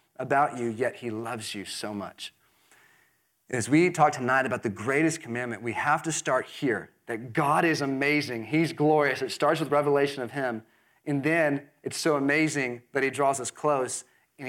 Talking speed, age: 180 wpm, 30-49